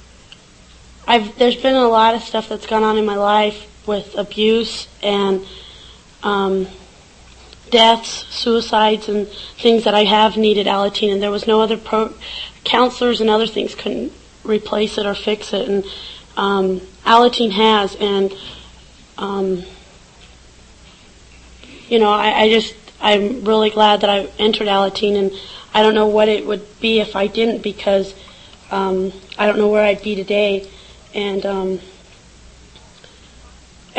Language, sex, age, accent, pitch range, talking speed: English, female, 30-49, American, 195-220 Hz, 145 wpm